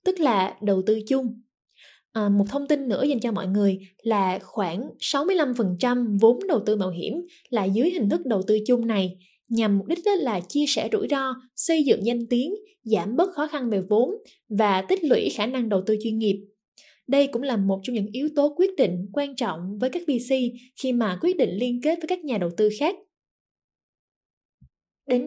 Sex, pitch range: female, 205-280 Hz